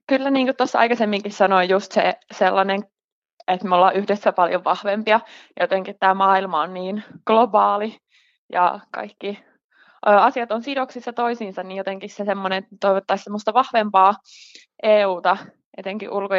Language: Finnish